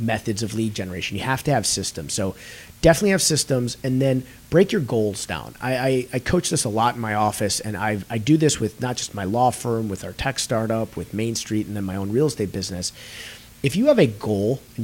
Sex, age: male, 30-49